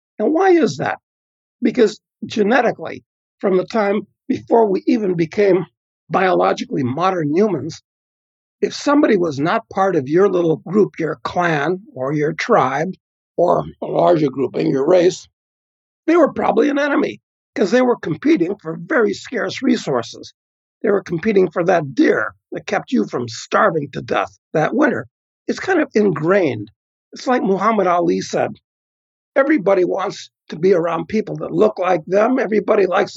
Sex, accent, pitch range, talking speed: male, American, 170-250 Hz, 155 wpm